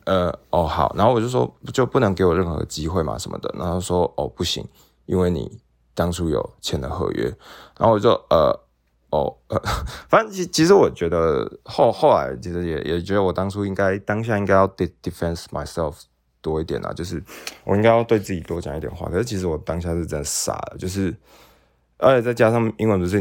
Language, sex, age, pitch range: Chinese, male, 20-39, 75-95 Hz